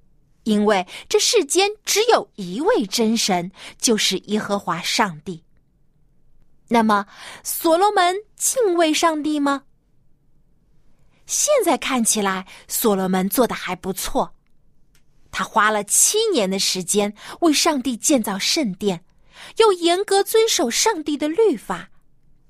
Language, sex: Chinese, female